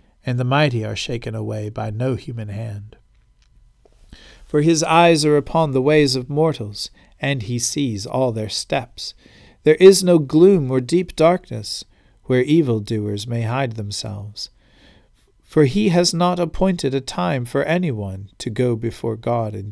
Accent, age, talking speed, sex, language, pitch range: American, 50-69, 160 wpm, male, English, 110-155 Hz